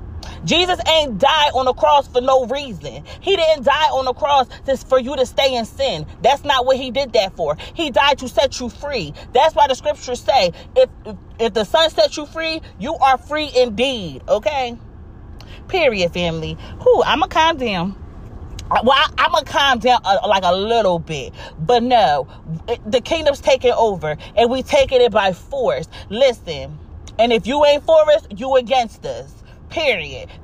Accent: American